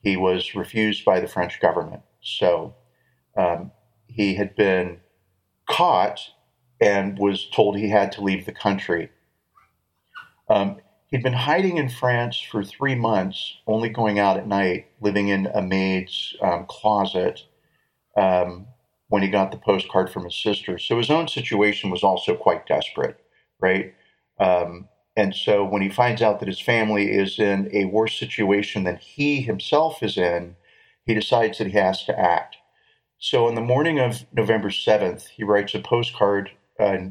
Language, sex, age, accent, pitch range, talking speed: English, male, 40-59, American, 95-110 Hz, 160 wpm